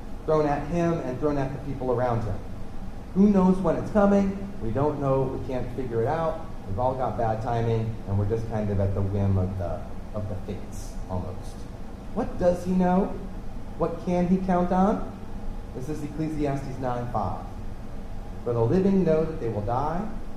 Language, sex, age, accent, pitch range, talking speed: English, male, 30-49, American, 100-130 Hz, 185 wpm